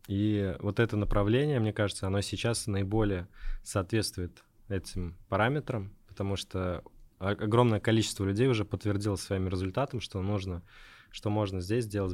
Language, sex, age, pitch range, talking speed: Russian, male, 20-39, 90-110 Hz, 130 wpm